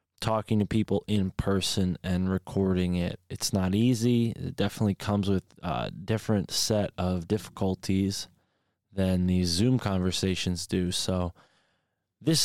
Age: 20-39